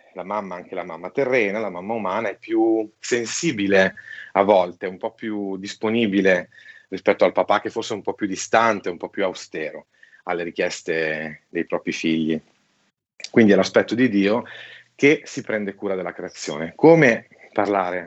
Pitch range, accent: 100-125 Hz, native